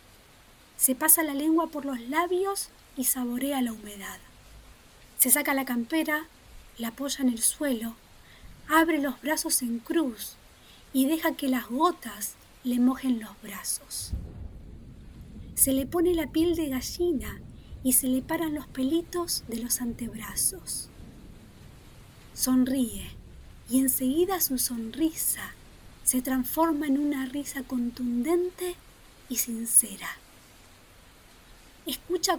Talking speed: 120 wpm